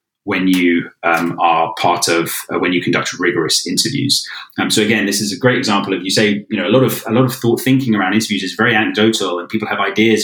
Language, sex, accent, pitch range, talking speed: English, male, British, 90-115 Hz, 235 wpm